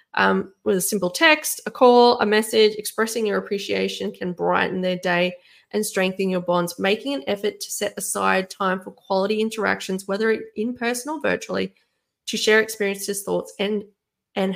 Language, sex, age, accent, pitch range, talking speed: English, female, 20-39, Australian, 200-290 Hz, 170 wpm